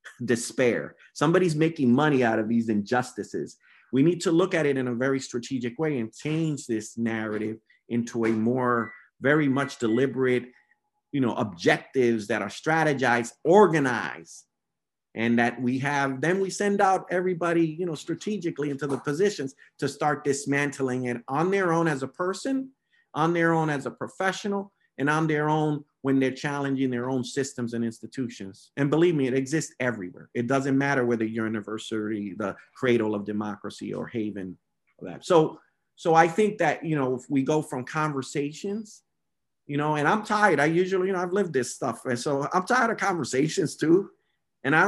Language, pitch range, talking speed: English, 120-170 Hz, 180 wpm